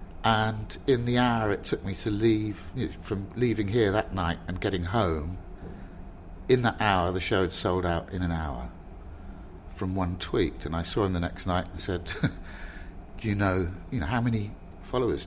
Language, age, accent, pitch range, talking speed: English, 50-69, British, 85-110 Hz, 190 wpm